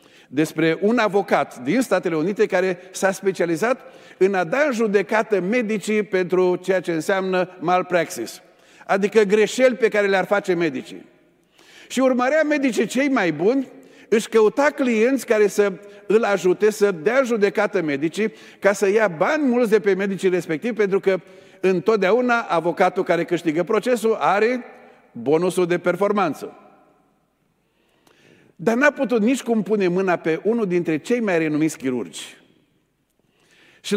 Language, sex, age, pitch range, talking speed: Romanian, male, 50-69, 180-235 Hz, 140 wpm